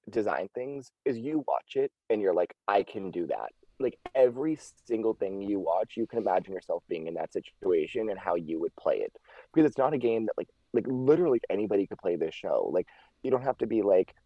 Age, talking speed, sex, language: 20-39, 225 wpm, male, English